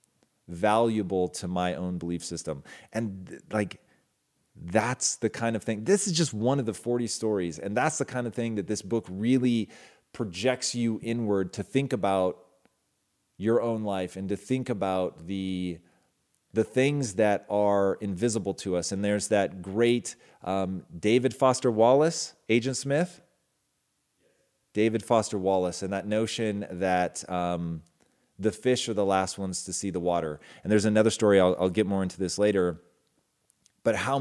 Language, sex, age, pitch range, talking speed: English, male, 30-49, 90-115 Hz, 165 wpm